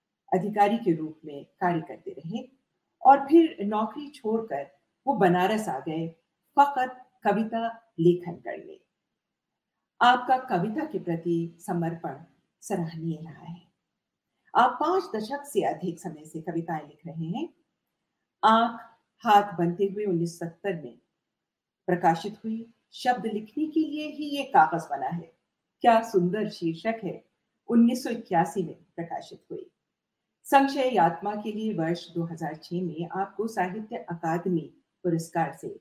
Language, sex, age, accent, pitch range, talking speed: Hindi, female, 50-69, native, 170-245 Hz, 125 wpm